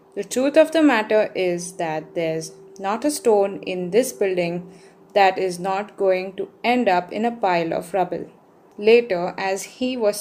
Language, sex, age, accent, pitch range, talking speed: English, female, 20-39, Indian, 185-240 Hz, 175 wpm